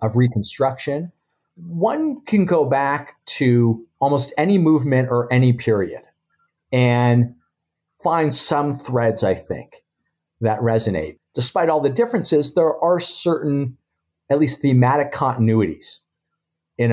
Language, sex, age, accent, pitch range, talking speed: English, male, 50-69, American, 115-145 Hz, 115 wpm